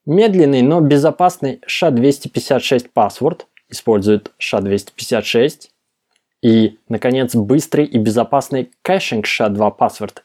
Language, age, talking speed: Russian, 20-39, 105 wpm